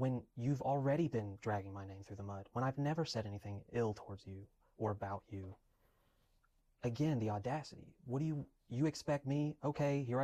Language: English